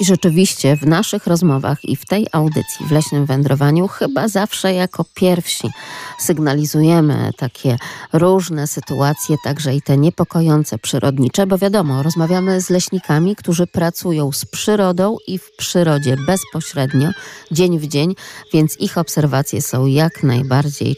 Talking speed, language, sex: 135 wpm, Polish, female